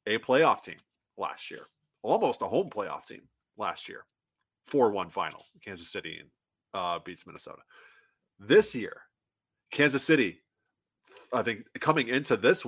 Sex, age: male, 30-49